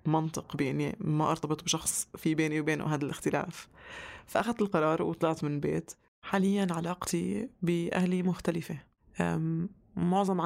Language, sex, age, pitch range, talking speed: Arabic, female, 20-39, 155-190 Hz, 115 wpm